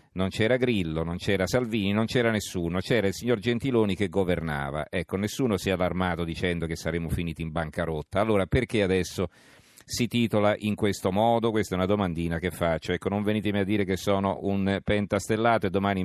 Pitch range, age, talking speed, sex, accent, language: 90-110 Hz, 40-59, 190 wpm, male, native, Italian